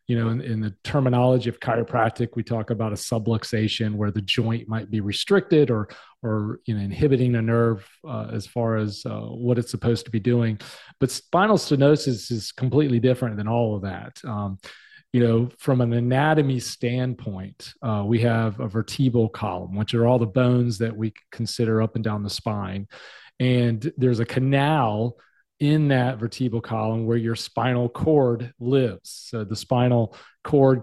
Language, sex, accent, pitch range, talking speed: English, male, American, 110-130 Hz, 175 wpm